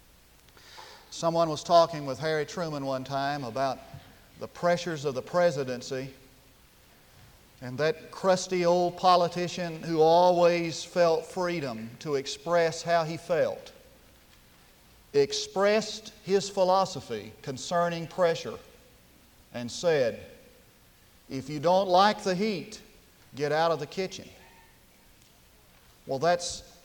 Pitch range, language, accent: 145-200 Hz, English, American